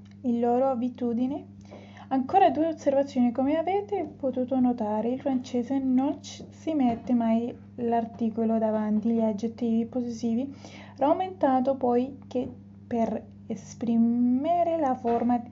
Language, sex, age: Spanish, female, 20-39